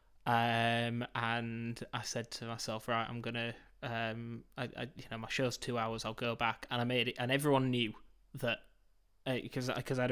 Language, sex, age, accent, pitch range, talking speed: English, male, 20-39, British, 120-130 Hz, 200 wpm